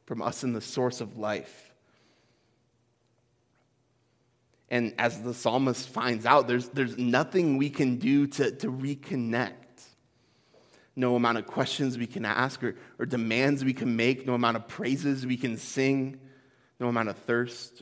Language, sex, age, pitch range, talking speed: English, male, 30-49, 120-135 Hz, 155 wpm